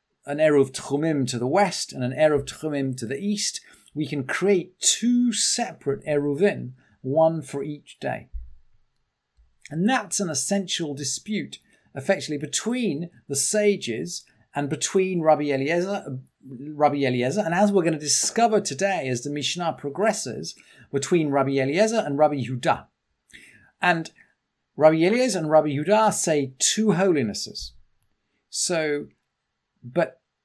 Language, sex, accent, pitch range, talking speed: English, male, British, 135-195 Hz, 130 wpm